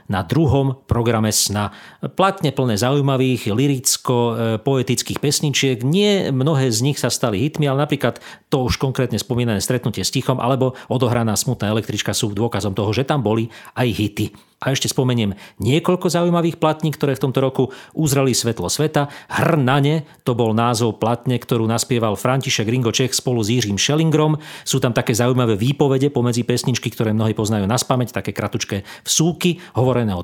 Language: Slovak